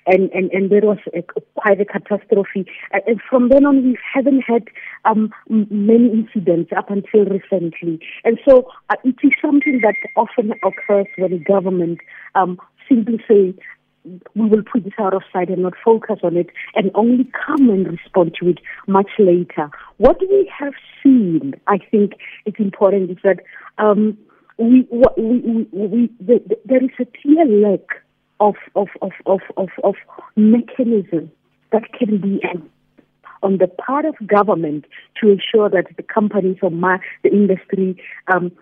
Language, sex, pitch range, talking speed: English, female, 180-235 Hz, 155 wpm